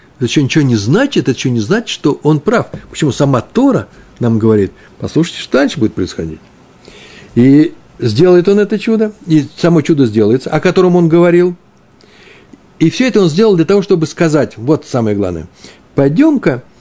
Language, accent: Russian, native